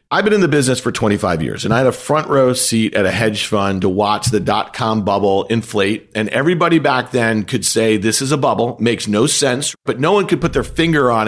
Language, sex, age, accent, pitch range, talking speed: English, male, 40-59, American, 115-160 Hz, 250 wpm